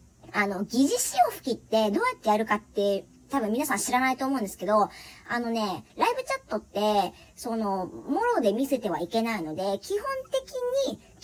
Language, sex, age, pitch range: Japanese, male, 40-59, 220-370 Hz